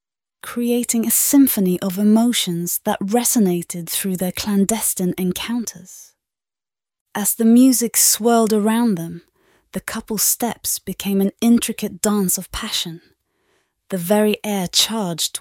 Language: English